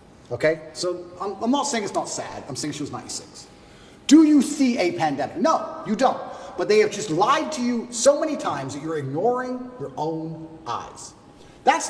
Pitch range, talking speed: 180-280 Hz, 195 wpm